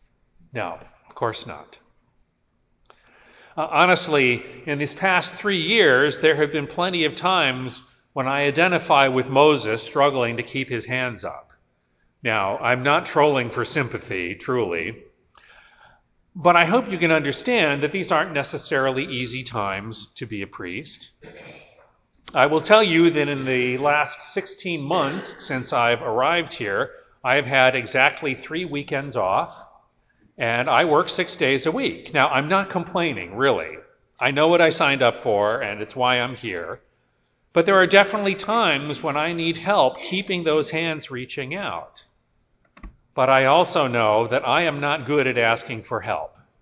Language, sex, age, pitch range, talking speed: English, male, 40-59, 125-165 Hz, 155 wpm